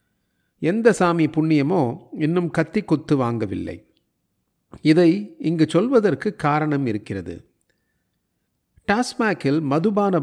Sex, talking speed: male, 80 wpm